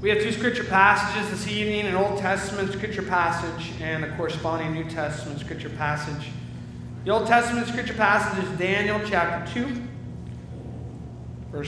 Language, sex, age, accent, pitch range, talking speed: English, male, 30-49, American, 145-175 Hz, 150 wpm